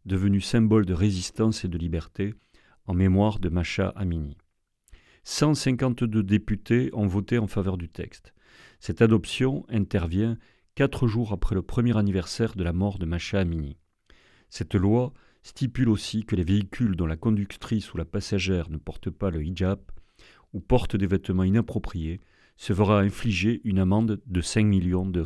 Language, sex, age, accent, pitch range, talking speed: French, male, 40-59, French, 90-110 Hz, 160 wpm